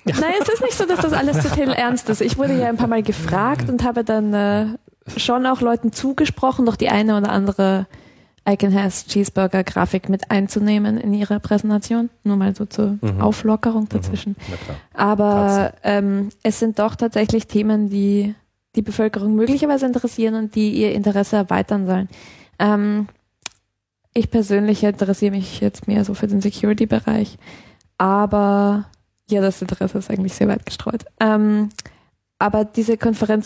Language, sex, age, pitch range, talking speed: German, female, 20-39, 200-220 Hz, 150 wpm